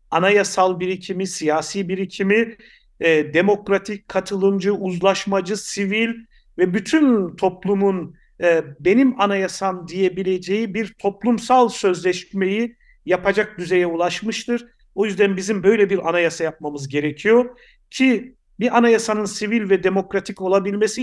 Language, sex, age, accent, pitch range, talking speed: Turkish, male, 50-69, native, 180-210 Hz, 105 wpm